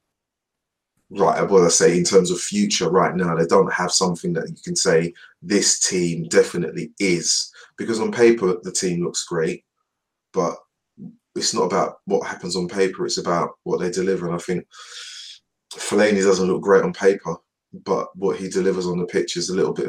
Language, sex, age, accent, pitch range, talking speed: English, male, 20-39, British, 85-100 Hz, 185 wpm